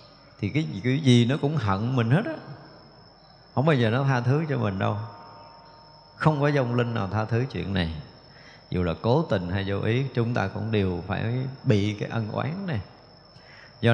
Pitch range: 100-140 Hz